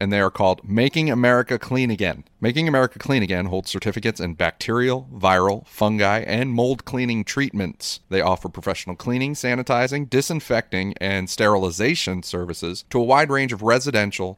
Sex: male